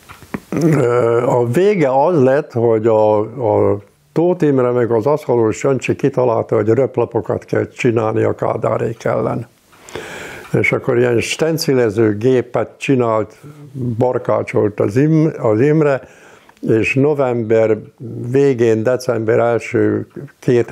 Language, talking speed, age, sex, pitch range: Hungarian, 105 wpm, 60-79, male, 110-145 Hz